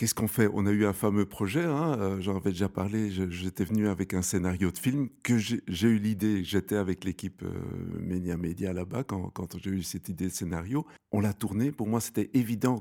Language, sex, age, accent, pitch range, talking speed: French, male, 50-69, French, 95-115 Hz, 235 wpm